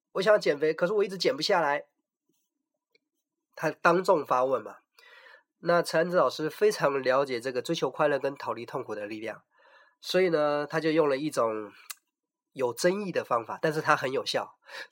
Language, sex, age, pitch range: Chinese, male, 30-49, 155-220 Hz